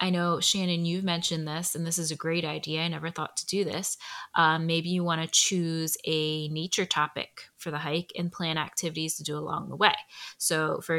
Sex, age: female, 20-39